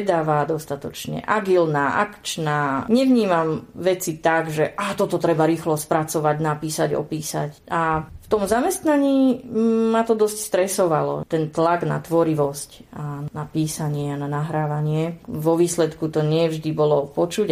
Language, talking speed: Slovak, 135 wpm